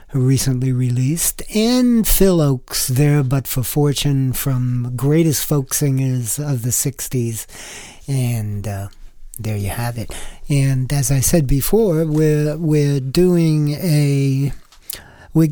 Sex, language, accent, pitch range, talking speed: male, English, American, 130-160 Hz, 125 wpm